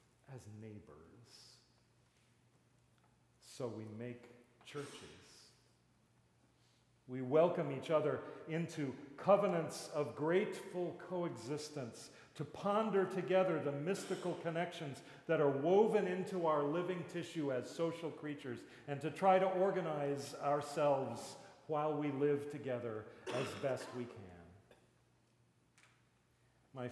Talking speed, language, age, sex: 105 wpm, English, 40-59, male